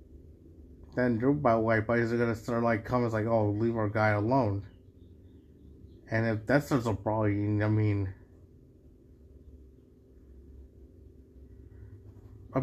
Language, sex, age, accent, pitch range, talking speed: English, male, 30-49, American, 100-130 Hz, 125 wpm